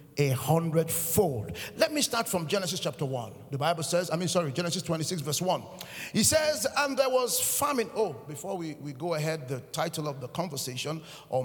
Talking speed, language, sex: 195 wpm, English, male